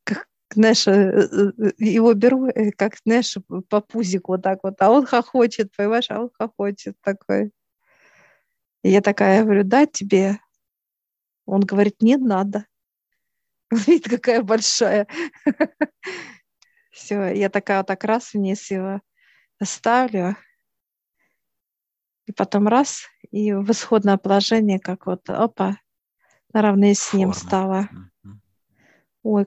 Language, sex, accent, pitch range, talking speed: Russian, female, native, 195-225 Hz, 110 wpm